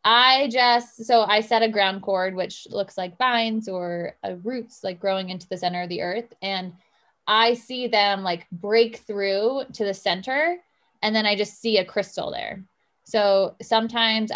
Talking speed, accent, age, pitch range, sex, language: 180 wpm, American, 20-39, 190-225 Hz, female, English